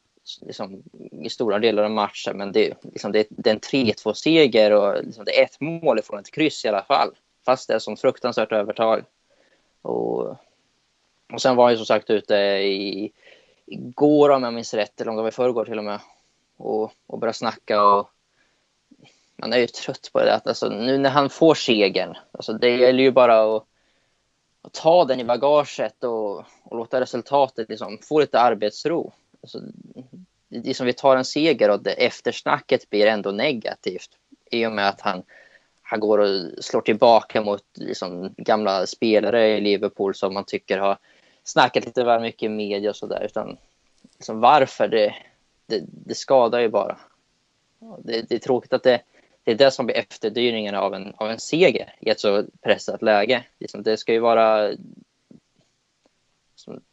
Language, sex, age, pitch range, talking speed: Swedish, male, 20-39, 105-130 Hz, 175 wpm